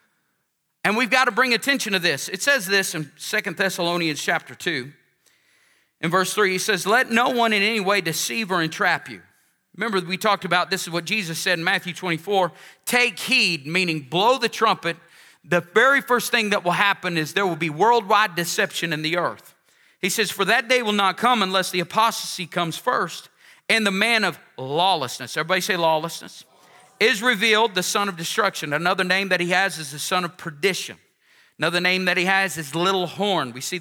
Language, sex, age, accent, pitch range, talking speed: English, male, 40-59, American, 170-220 Hz, 200 wpm